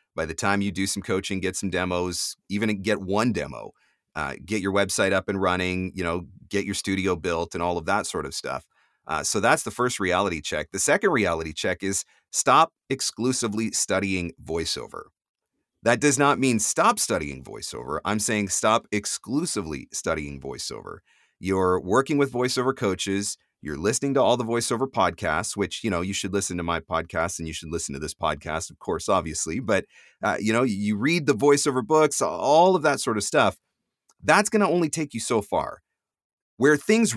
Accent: American